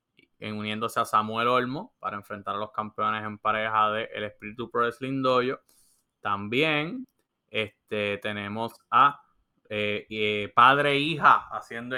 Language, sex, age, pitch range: English, male, 20-39, 105-125 Hz